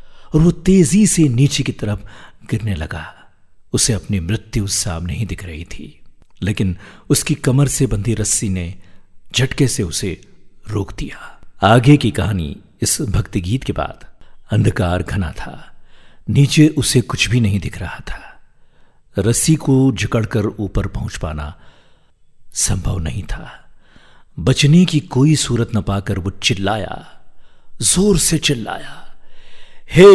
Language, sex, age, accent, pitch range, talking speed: Hindi, male, 50-69, native, 100-145 Hz, 135 wpm